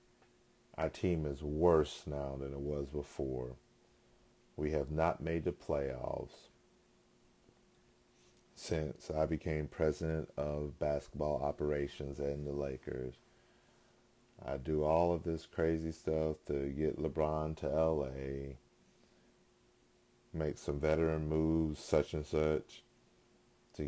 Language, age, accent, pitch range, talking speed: English, 40-59, American, 70-95 Hz, 115 wpm